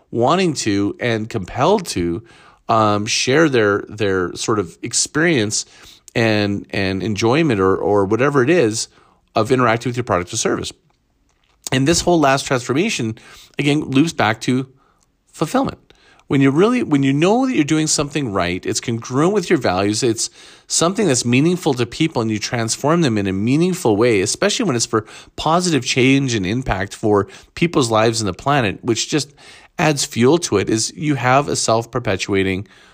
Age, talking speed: 40-59, 170 wpm